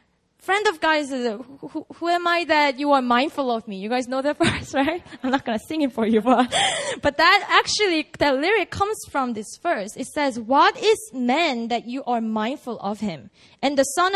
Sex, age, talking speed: female, 20-39, 225 wpm